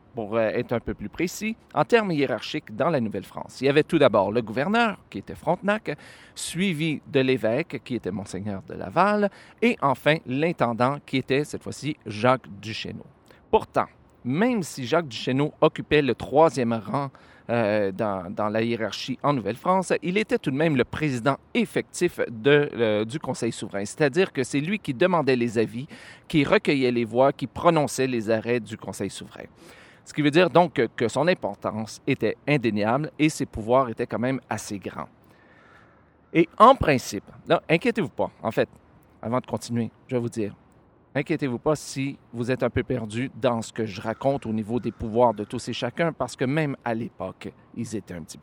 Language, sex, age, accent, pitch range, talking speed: French, male, 40-59, Canadian, 115-150 Hz, 185 wpm